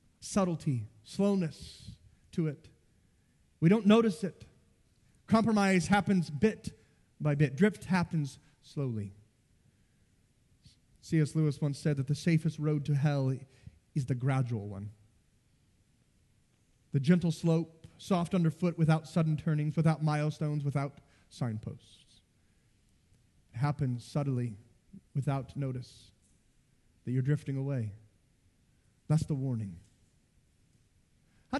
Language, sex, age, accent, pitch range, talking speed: English, male, 30-49, American, 125-190 Hz, 105 wpm